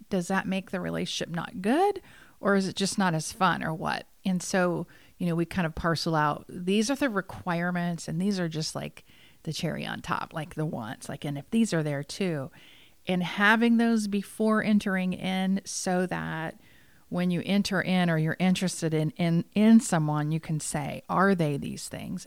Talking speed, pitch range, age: 200 wpm, 160-195 Hz, 40-59